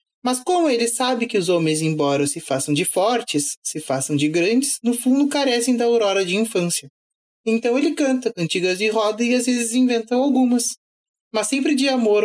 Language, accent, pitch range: Portuguese, Brazilian, 185-265 Hz